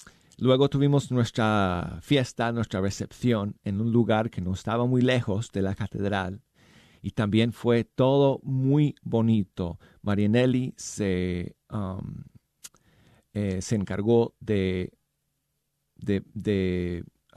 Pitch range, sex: 100-125 Hz, male